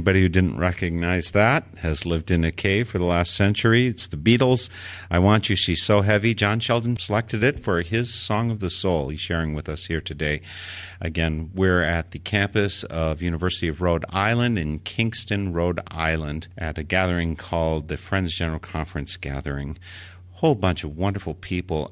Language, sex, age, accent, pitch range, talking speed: English, male, 50-69, American, 80-100 Hz, 185 wpm